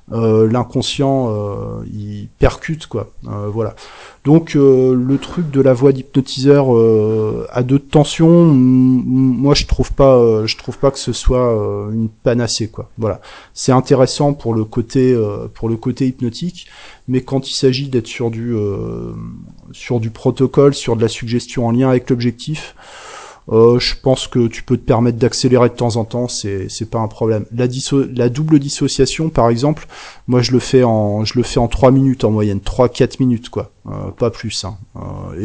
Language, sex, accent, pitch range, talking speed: French, male, French, 115-140 Hz, 190 wpm